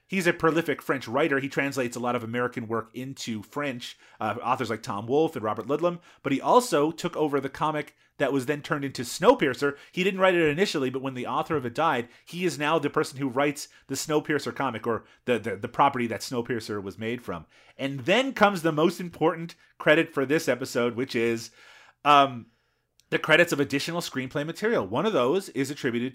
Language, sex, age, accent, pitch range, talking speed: English, male, 30-49, American, 120-155 Hz, 210 wpm